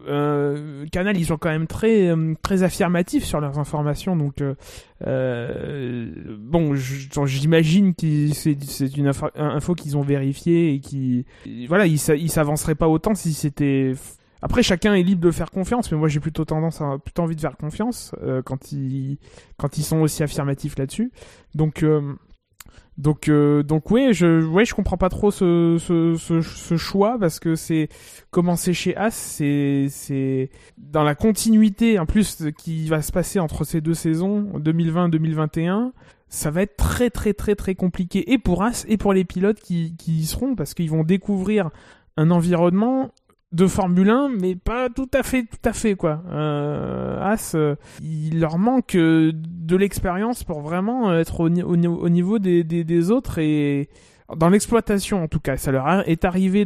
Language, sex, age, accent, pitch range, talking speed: French, male, 20-39, French, 150-190 Hz, 180 wpm